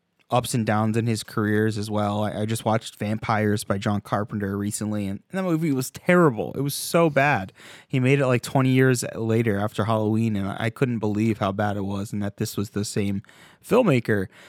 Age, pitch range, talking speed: 20-39, 105-130 Hz, 205 wpm